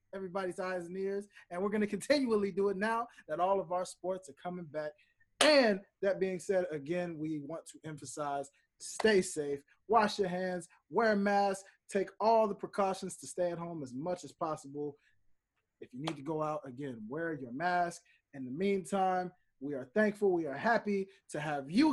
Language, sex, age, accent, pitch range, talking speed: English, male, 20-39, American, 175-230 Hz, 195 wpm